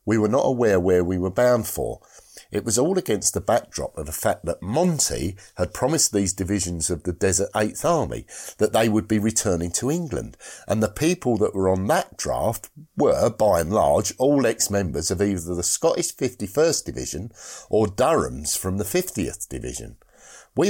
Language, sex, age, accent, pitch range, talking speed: English, male, 50-69, British, 90-120 Hz, 185 wpm